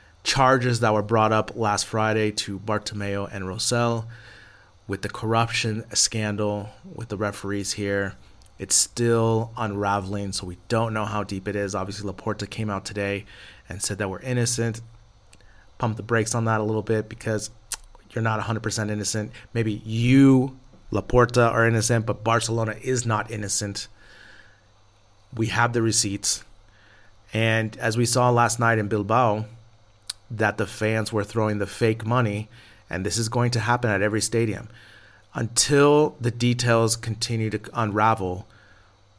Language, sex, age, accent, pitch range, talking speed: English, male, 30-49, American, 105-115 Hz, 150 wpm